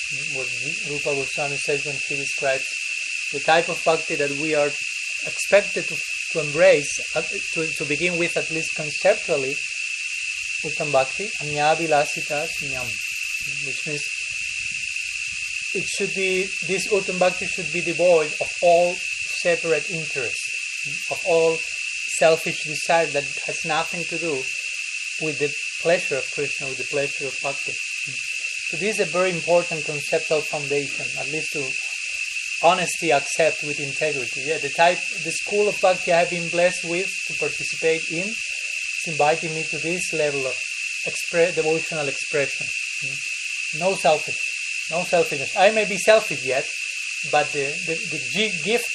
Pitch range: 145-175 Hz